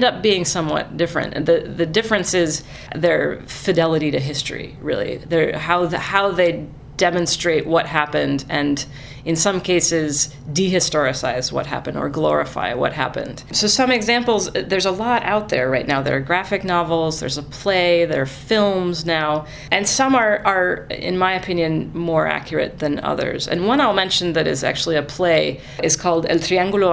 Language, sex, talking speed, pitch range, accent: English, female, 170 wpm, 150-185 Hz, American